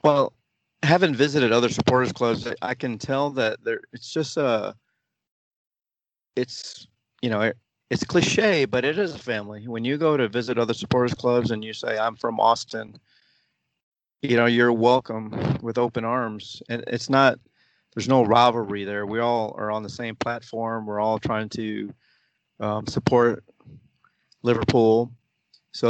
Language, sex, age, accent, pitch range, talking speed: English, male, 40-59, American, 110-120 Hz, 160 wpm